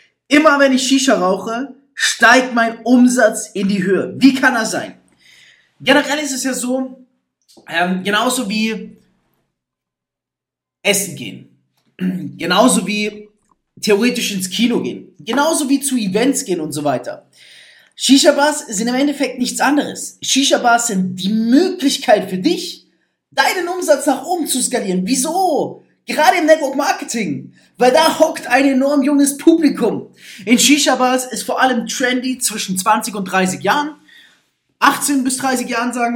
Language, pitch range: German, 220-285 Hz